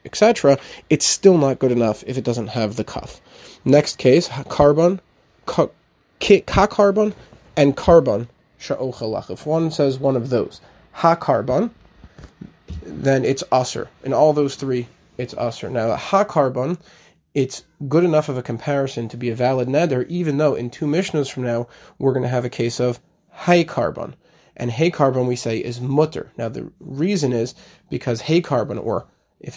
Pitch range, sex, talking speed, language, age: 120-160 Hz, male, 160 wpm, English, 20-39